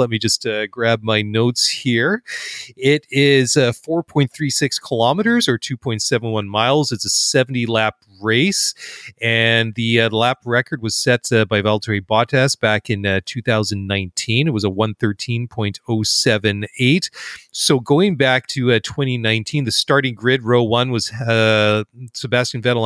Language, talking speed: English, 140 wpm